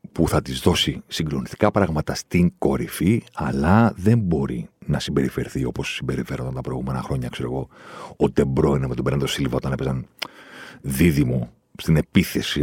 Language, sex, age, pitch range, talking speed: Greek, male, 50-69, 75-100 Hz, 145 wpm